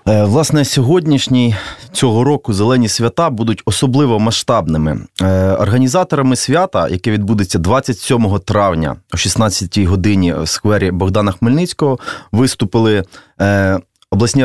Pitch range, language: 100-130 Hz, Russian